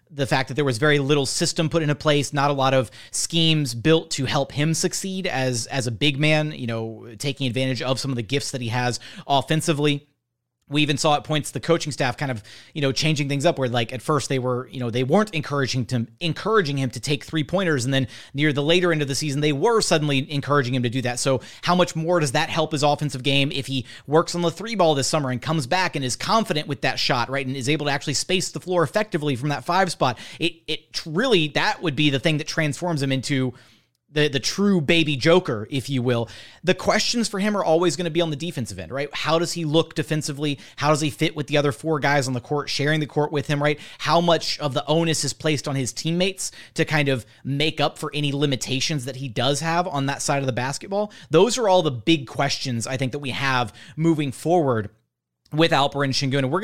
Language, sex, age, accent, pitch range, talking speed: English, male, 30-49, American, 130-160 Hz, 250 wpm